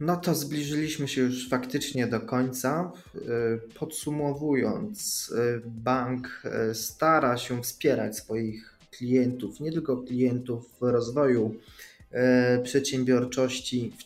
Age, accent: 20-39, native